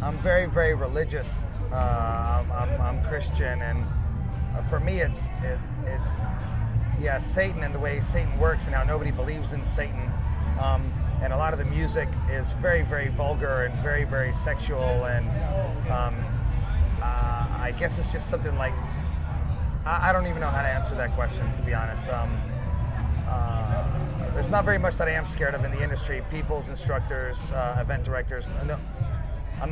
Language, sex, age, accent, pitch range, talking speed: English, male, 30-49, American, 100-130 Hz, 170 wpm